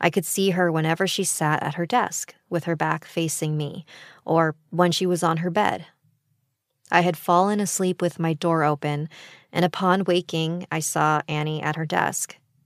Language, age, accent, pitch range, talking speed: English, 20-39, American, 150-180 Hz, 185 wpm